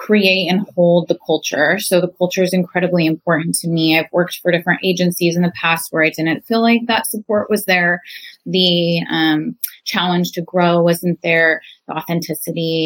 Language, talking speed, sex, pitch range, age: English, 180 wpm, female, 170-195 Hz, 20-39